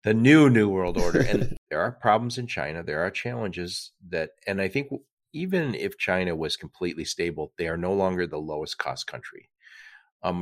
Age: 40-59